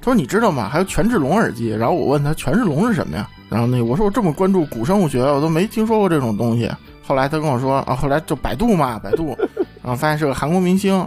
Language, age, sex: Chinese, 20-39, male